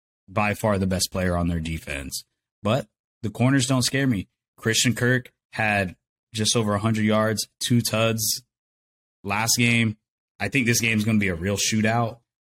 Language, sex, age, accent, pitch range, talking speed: English, male, 20-39, American, 95-110 Hz, 175 wpm